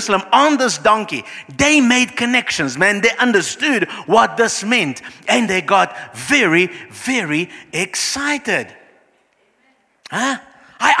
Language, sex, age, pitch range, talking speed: English, male, 50-69, 160-250 Hz, 110 wpm